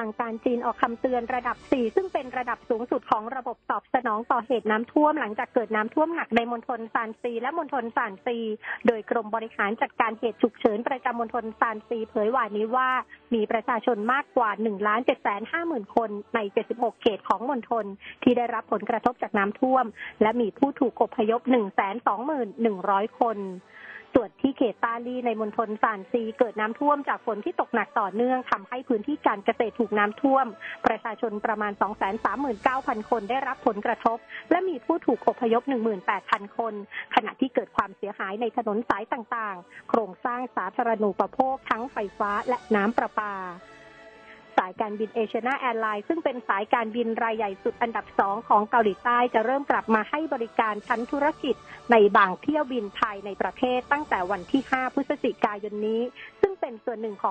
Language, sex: Thai, female